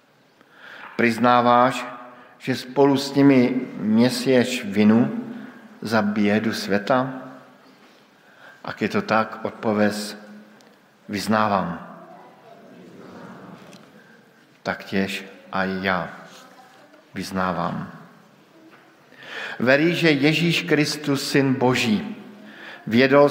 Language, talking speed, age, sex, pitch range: Slovak, 70 wpm, 50-69, male, 105-140 Hz